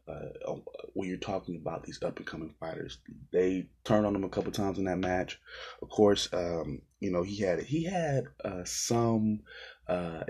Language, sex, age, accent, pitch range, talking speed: English, male, 20-39, American, 85-105 Hz, 185 wpm